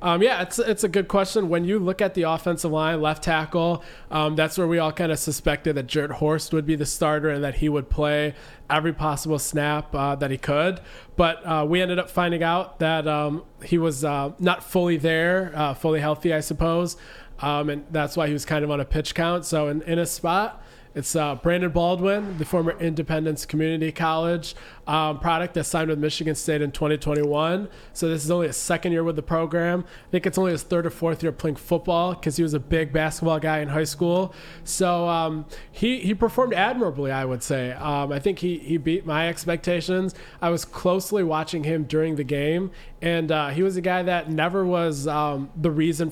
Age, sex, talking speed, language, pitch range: 20-39, male, 215 wpm, English, 150-175 Hz